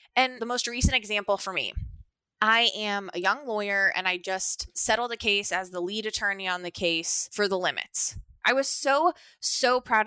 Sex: female